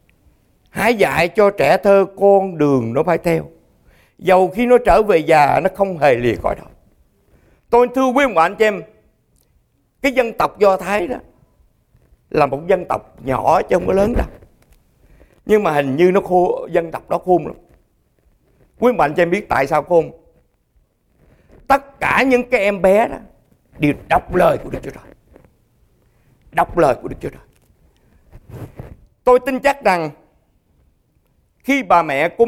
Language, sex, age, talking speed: English, male, 60-79, 170 wpm